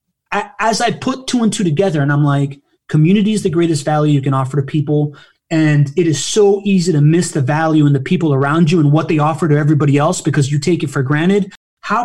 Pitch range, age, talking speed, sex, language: 145-180 Hz, 30-49, 240 wpm, male, English